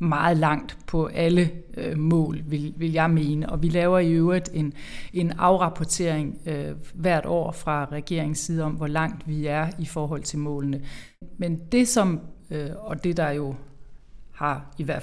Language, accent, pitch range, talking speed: Danish, native, 150-180 Hz, 155 wpm